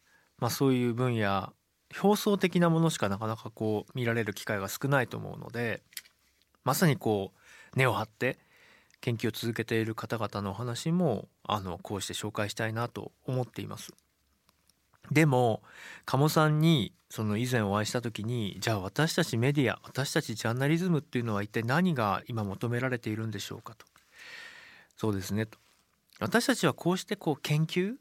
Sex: male